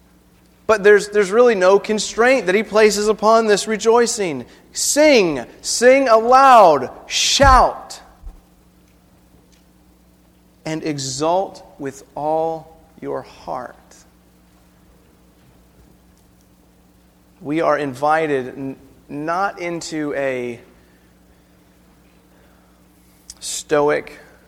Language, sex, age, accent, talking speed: English, male, 30-49, American, 75 wpm